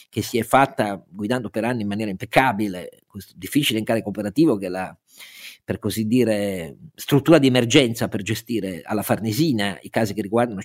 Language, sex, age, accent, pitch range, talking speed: Italian, male, 50-69, native, 110-160 Hz, 175 wpm